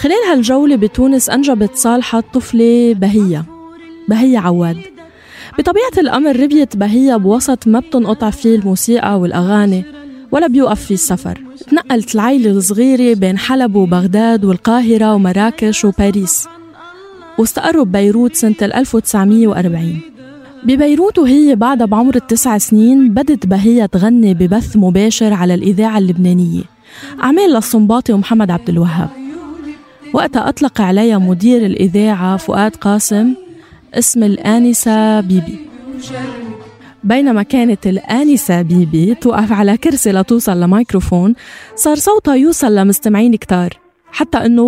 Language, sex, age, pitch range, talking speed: Arabic, female, 20-39, 205-265 Hz, 110 wpm